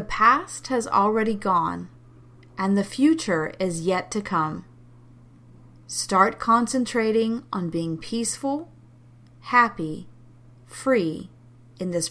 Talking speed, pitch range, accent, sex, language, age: 105 wpm, 120-200 Hz, American, female, English, 40-59